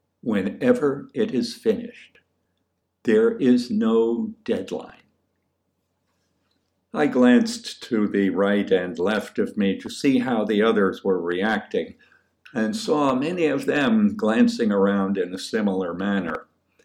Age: 60-79